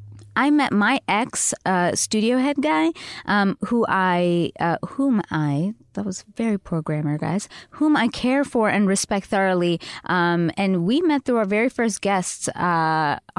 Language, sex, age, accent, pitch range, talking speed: English, female, 20-39, American, 175-225 Hz, 165 wpm